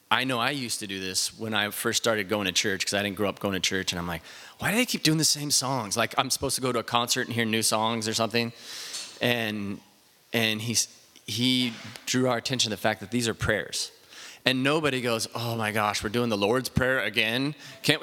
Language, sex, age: English, male, 30-49